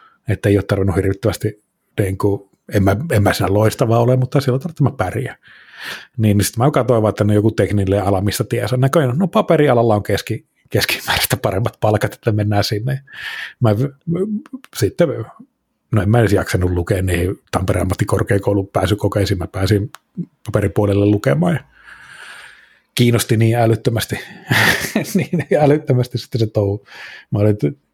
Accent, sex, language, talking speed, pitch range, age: native, male, Finnish, 150 wpm, 100-120 Hz, 30-49